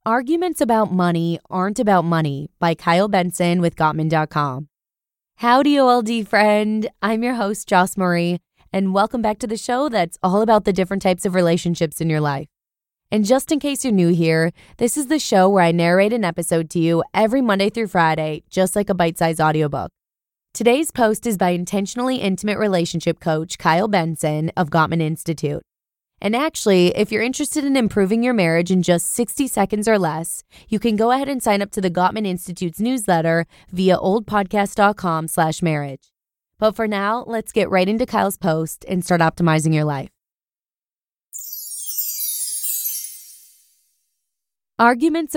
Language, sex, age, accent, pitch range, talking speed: English, female, 20-39, American, 165-220 Hz, 160 wpm